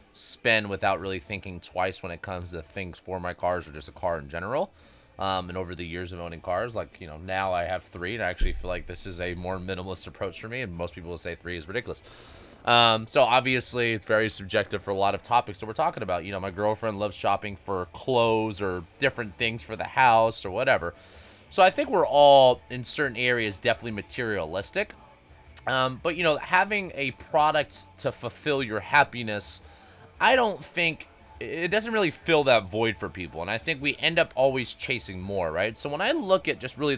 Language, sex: English, male